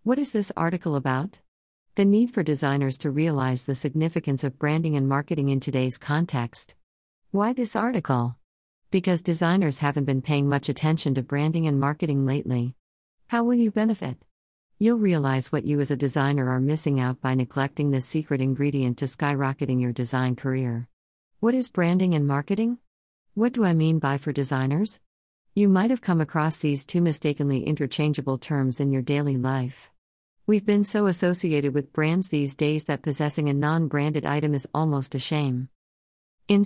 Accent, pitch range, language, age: American, 130-160 Hz, English, 50-69